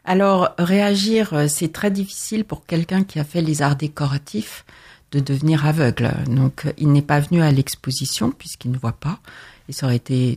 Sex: female